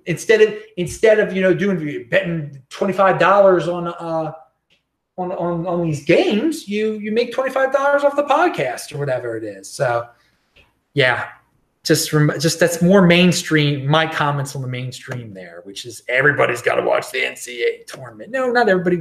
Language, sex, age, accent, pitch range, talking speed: English, male, 30-49, American, 135-190 Hz, 180 wpm